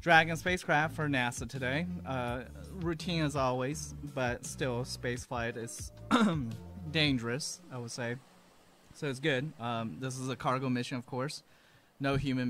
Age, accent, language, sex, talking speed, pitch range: 30-49, American, English, male, 145 wpm, 120-145 Hz